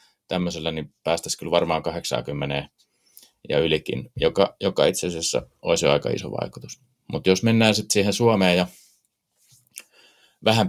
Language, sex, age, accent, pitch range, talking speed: Finnish, male, 30-49, native, 75-95 Hz, 130 wpm